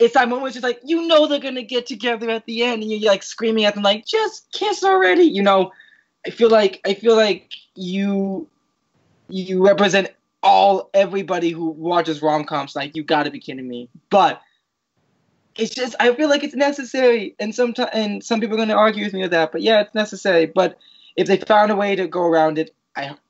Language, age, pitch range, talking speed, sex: English, 20-39, 165-230 Hz, 220 wpm, male